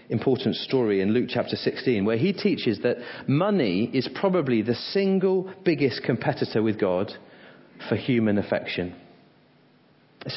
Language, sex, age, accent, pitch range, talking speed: English, male, 30-49, British, 110-145 Hz, 135 wpm